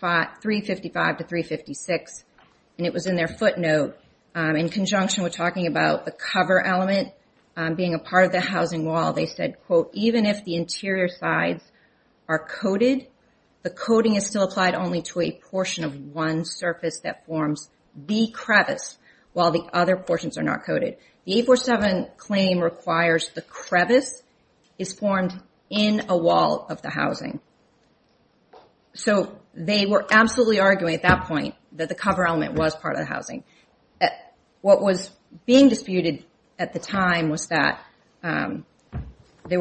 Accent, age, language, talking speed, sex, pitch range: American, 40-59, English, 155 wpm, female, 165-200 Hz